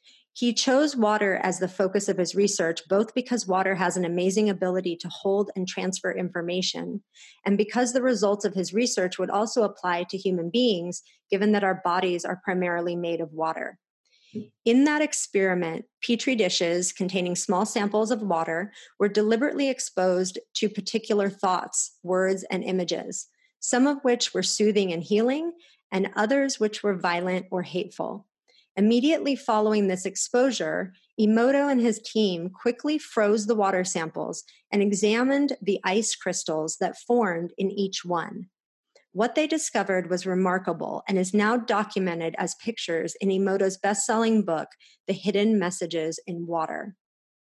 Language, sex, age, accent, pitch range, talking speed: English, female, 30-49, American, 180-225 Hz, 150 wpm